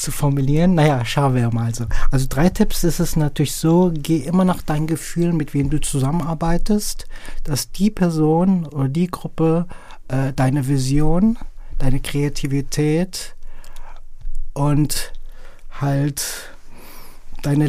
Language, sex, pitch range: German, male, 130-160 Hz